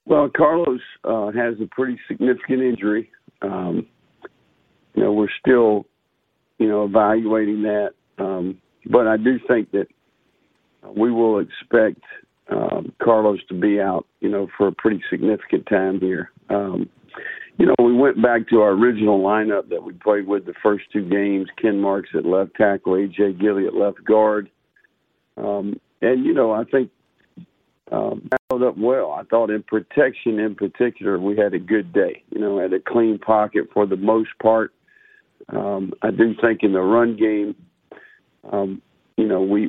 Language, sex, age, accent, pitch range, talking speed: English, male, 50-69, American, 100-115 Hz, 165 wpm